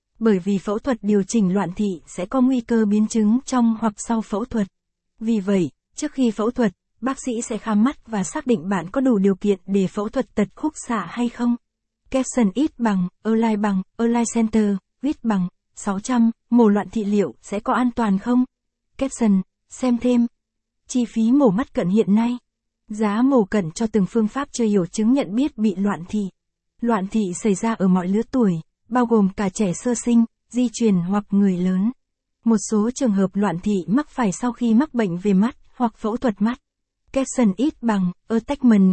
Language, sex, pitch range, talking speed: Vietnamese, female, 200-240 Hz, 200 wpm